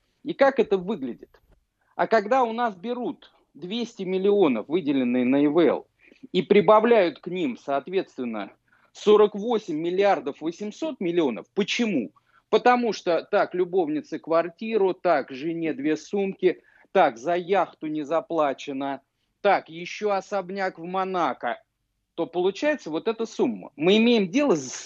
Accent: native